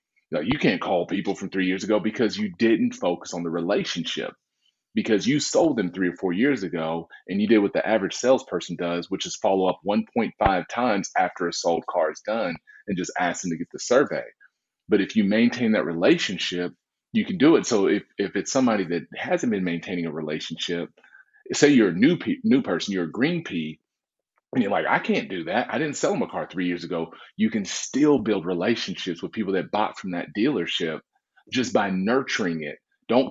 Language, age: English, 30-49